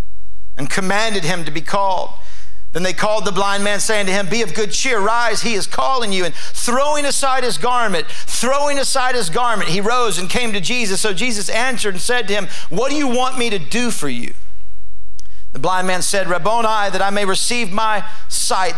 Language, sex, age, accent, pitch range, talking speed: English, male, 50-69, American, 175-235 Hz, 210 wpm